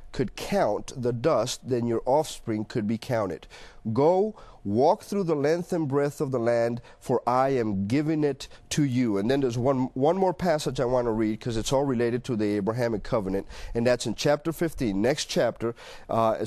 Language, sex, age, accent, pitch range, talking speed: English, male, 40-59, American, 120-160 Hz, 195 wpm